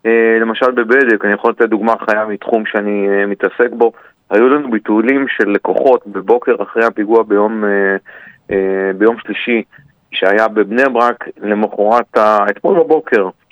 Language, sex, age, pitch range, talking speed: Hebrew, male, 40-59, 100-120 Hz, 130 wpm